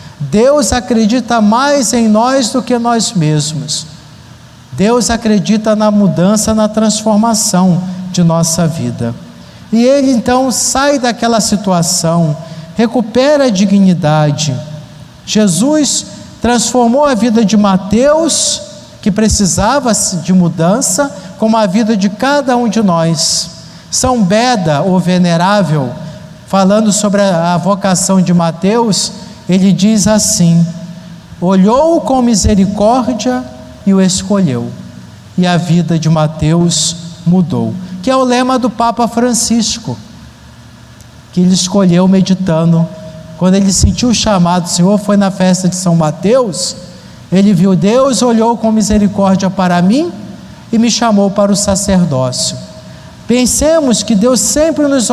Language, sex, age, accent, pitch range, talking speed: Portuguese, male, 50-69, Brazilian, 170-230 Hz, 125 wpm